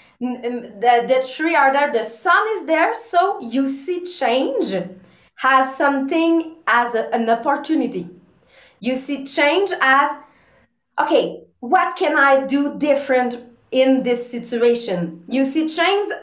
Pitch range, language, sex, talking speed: 245-315 Hz, English, female, 125 wpm